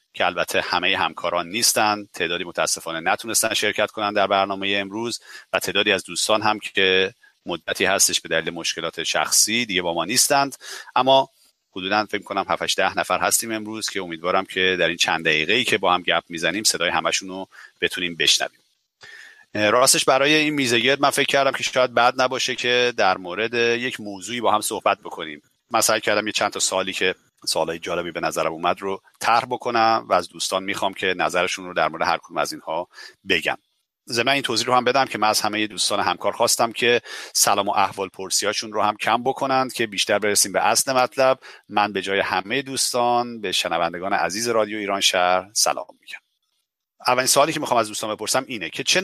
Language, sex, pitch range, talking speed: Persian, male, 100-125 Hz, 190 wpm